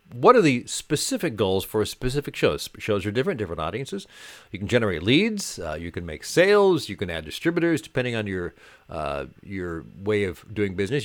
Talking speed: 195 wpm